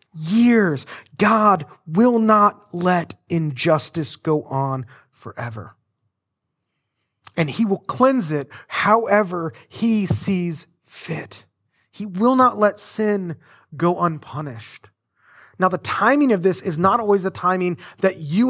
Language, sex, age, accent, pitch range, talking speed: English, male, 30-49, American, 125-190 Hz, 120 wpm